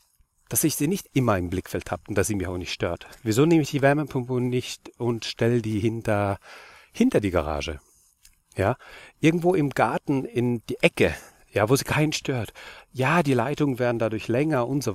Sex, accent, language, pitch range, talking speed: male, German, German, 100-140 Hz, 195 wpm